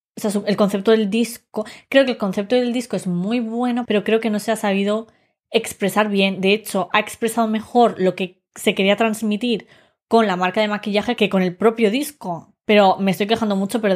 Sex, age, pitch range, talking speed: female, 20-39, 190-225 Hz, 215 wpm